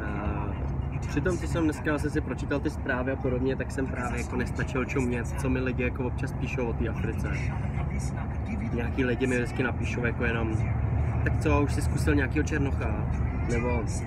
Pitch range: 75-120 Hz